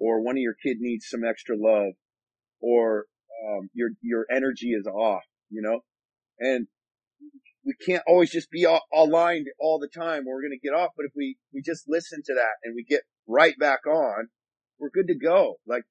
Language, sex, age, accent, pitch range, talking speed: English, male, 40-59, American, 135-170 Hz, 200 wpm